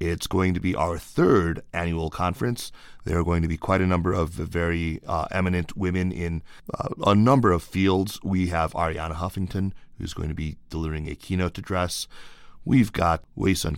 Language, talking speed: English, 185 wpm